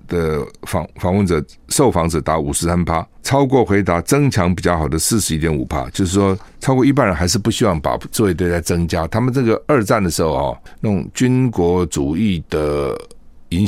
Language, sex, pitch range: Chinese, male, 85-110 Hz